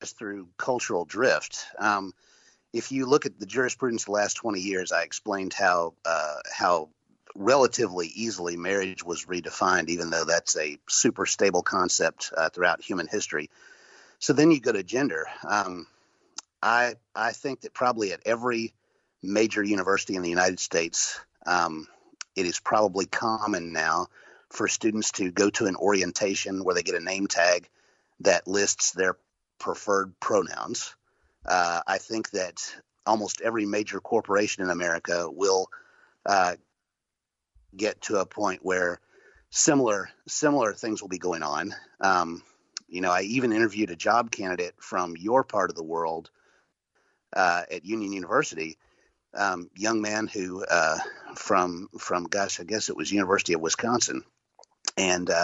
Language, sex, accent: English, male, American